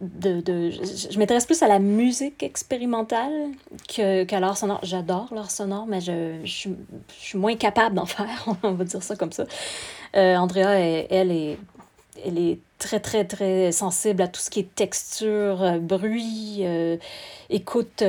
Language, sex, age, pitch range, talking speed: French, female, 30-49, 185-220 Hz, 175 wpm